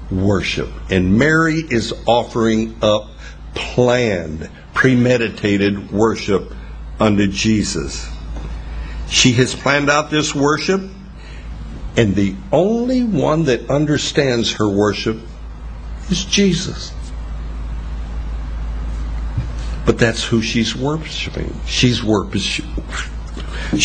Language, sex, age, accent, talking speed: English, male, 60-79, American, 85 wpm